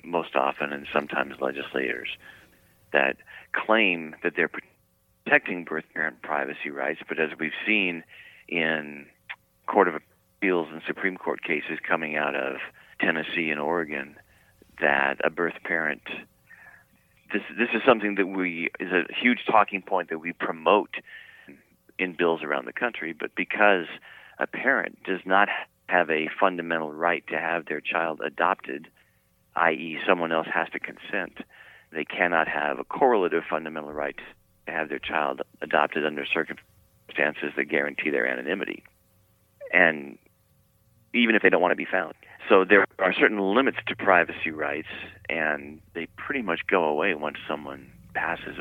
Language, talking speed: English, 150 wpm